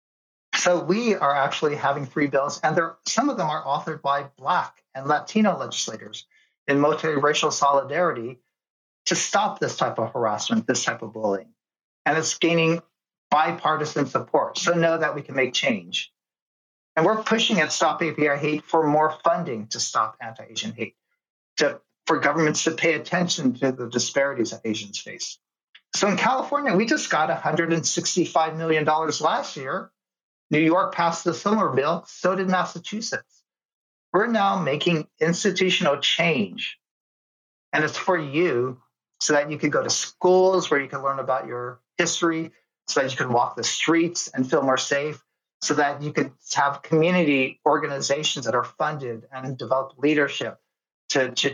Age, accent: 50-69, American